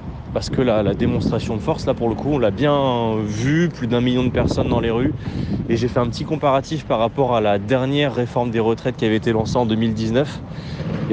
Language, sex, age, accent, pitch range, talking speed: French, male, 30-49, French, 115-140 Hz, 235 wpm